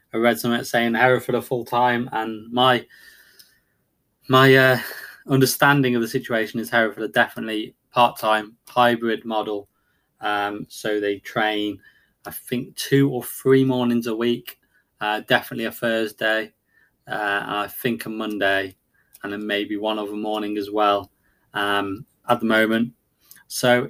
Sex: male